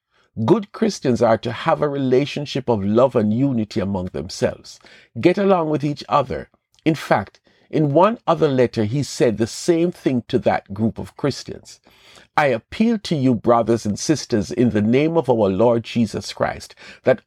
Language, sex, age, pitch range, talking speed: English, male, 50-69, 105-145 Hz, 175 wpm